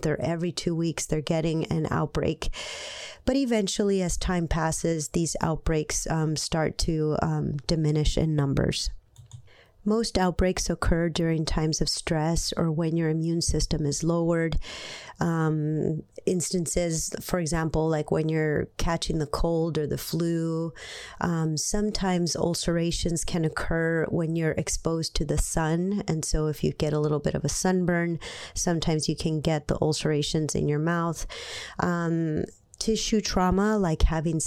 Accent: American